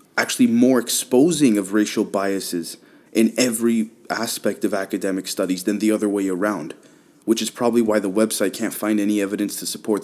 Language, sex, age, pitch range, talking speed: English, male, 20-39, 105-140 Hz, 175 wpm